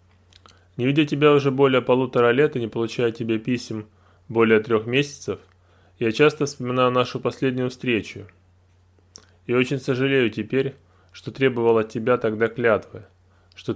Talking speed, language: 140 wpm, Russian